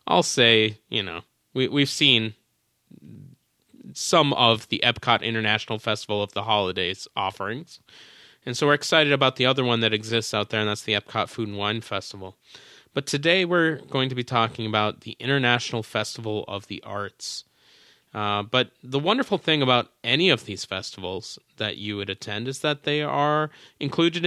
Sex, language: male, English